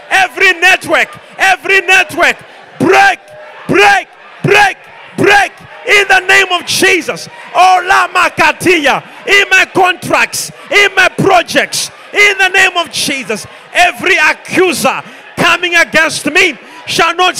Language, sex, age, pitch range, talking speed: English, male, 40-59, 315-360 Hz, 105 wpm